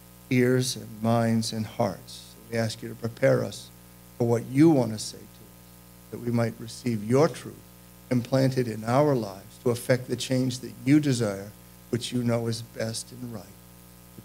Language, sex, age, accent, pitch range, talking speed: English, male, 50-69, American, 115-175 Hz, 185 wpm